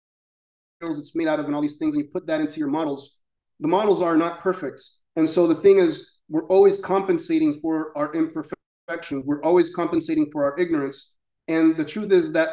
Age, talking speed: 30-49, 200 wpm